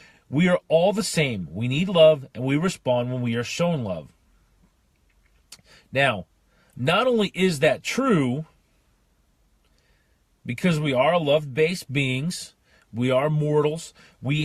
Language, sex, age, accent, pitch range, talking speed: English, male, 40-59, American, 115-160 Hz, 130 wpm